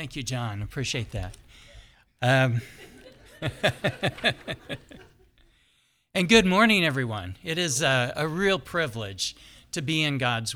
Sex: male